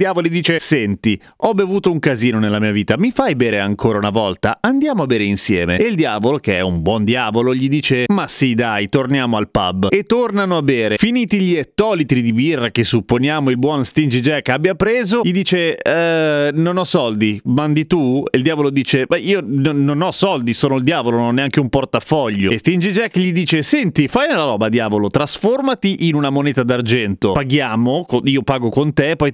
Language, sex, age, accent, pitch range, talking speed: Italian, male, 30-49, native, 120-160 Hz, 205 wpm